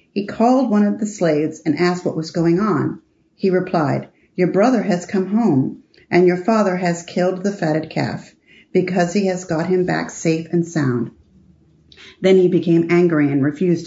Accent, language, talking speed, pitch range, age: American, English, 180 wpm, 155-185 Hz, 40-59